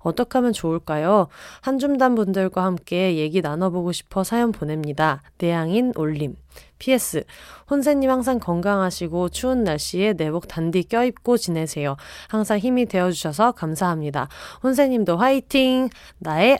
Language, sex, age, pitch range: Korean, female, 20-39, 165-225 Hz